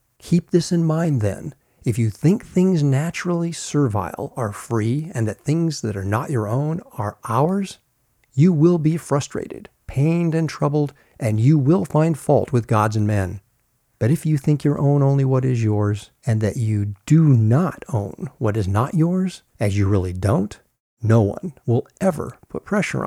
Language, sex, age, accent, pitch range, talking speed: English, male, 50-69, American, 110-155 Hz, 180 wpm